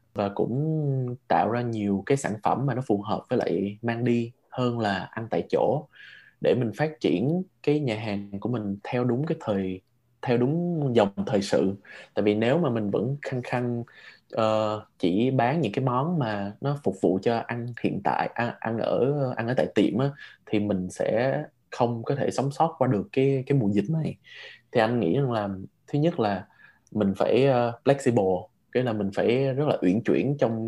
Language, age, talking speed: Vietnamese, 20-39, 205 wpm